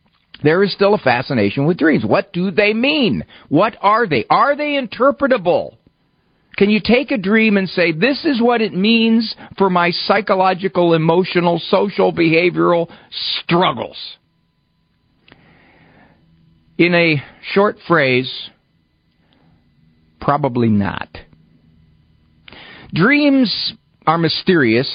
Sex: male